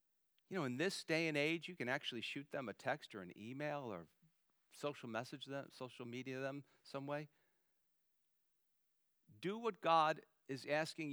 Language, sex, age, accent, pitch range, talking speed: English, male, 50-69, American, 145-195 Hz, 165 wpm